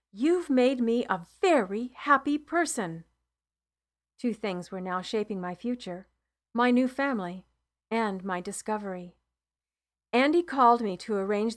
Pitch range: 190-255 Hz